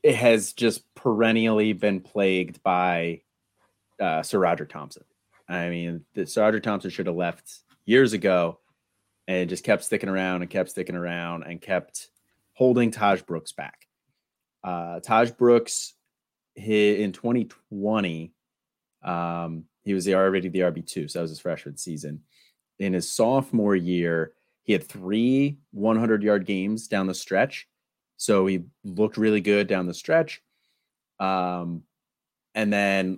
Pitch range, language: 90-115 Hz, English